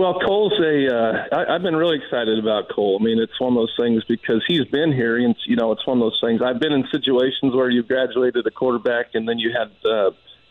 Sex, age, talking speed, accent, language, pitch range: male, 40-59, 250 wpm, American, English, 110-130 Hz